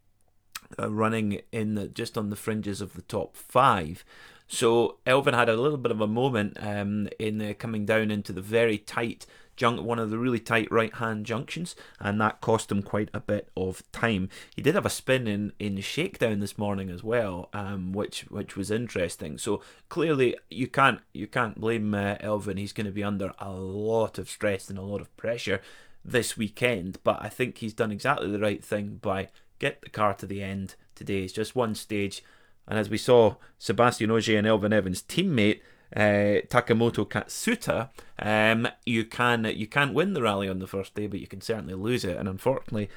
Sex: male